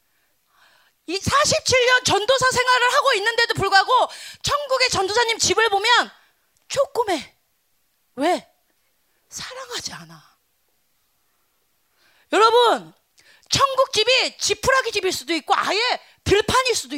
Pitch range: 295-465 Hz